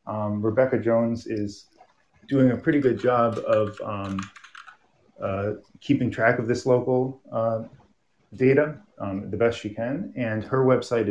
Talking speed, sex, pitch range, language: 145 wpm, male, 105-120 Hz, English